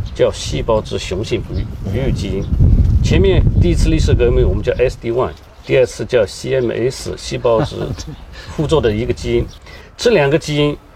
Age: 50-69